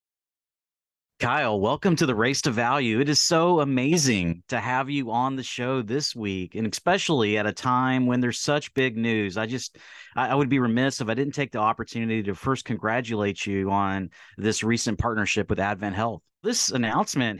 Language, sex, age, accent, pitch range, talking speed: English, male, 30-49, American, 105-120 Hz, 185 wpm